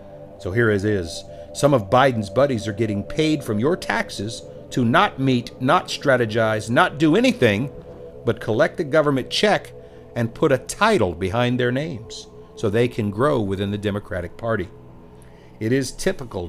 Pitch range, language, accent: 105-150 Hz, English, American